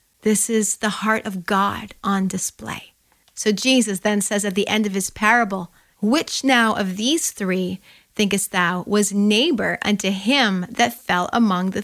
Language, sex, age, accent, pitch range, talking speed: English, female, 30-49, American, 195-230 Hz, 165 wpm